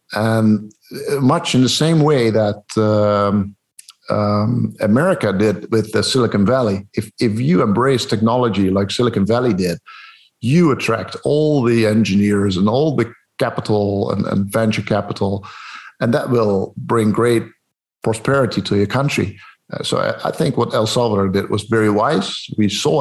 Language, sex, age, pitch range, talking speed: English, male, 50-69, 105-125 Hz, 155 wpm